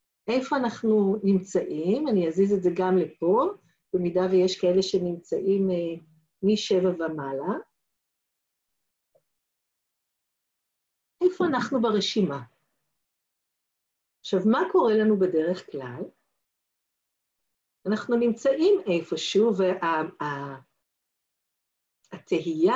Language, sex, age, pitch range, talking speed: Hebrew, female, 50-69, 175-240 Hz, 75 wpm